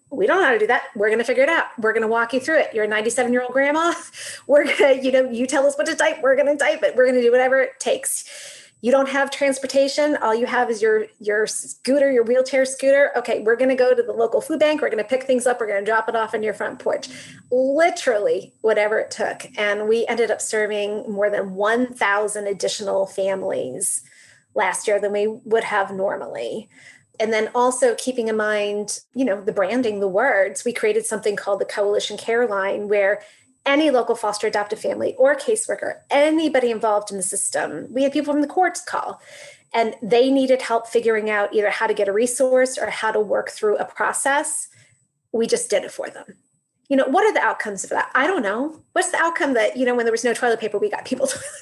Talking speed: 225 wpm